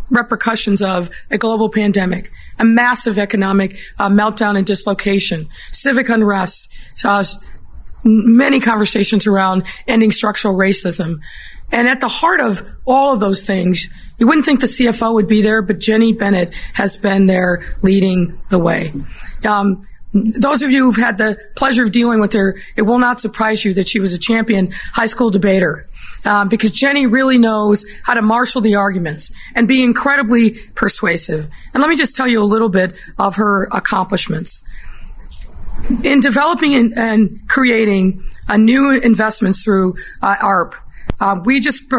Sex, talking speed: female, 160 wpm